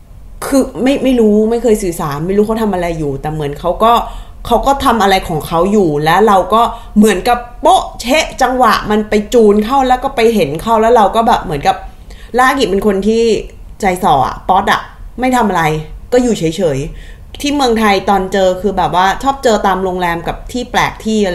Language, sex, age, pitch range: Thai, female, 20-39, 175-235 Hz